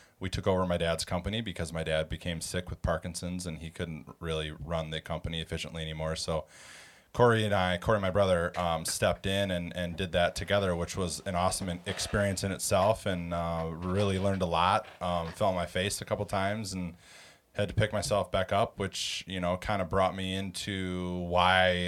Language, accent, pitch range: English, American, 85-100 Hz